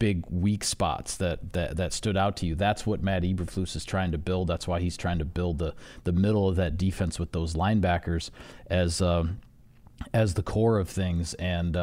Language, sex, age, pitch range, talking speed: English, male, 40-59, 90-110 Hz, 210 wpm